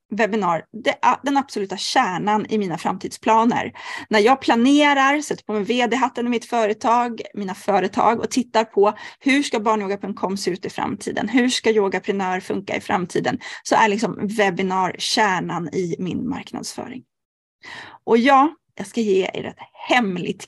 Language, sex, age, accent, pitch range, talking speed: Swedish, female, 30-49, native, 205-275 Hz, 155 wpm